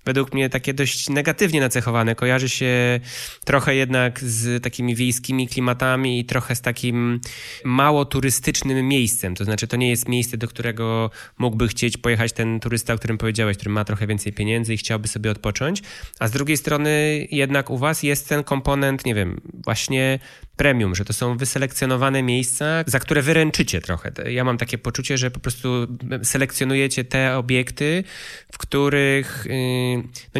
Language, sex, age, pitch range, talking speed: Polish, male, 20-39, 120-145 Hz, 160 wpm